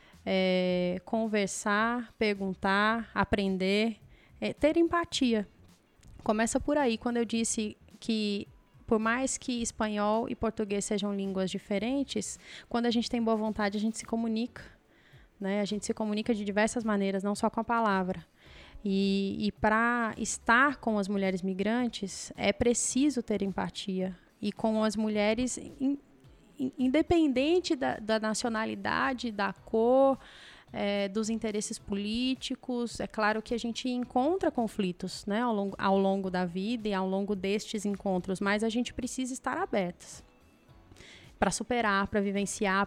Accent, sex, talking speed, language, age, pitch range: Brazilian, female, 145 wpm, Portuguese, 20-39, 195-235 Hz